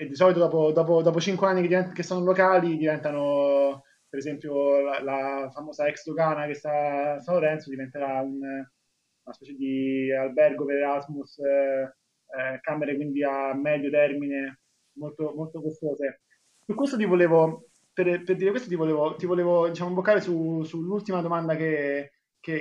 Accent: native